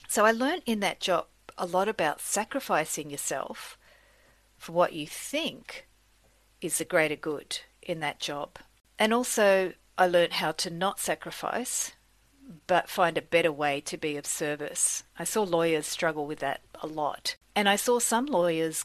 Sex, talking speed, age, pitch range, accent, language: female, 165 wpm, 40-59, 155-200 Hz, Australian, English